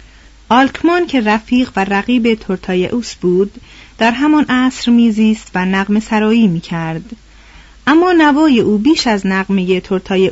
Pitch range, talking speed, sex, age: 195-255 Hz, 135 wpm, female, 30-49